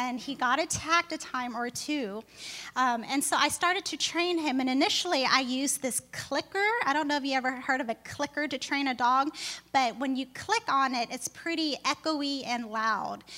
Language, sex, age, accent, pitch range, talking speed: English, female, 10-29, American, 250-290 Hz, 210 wpm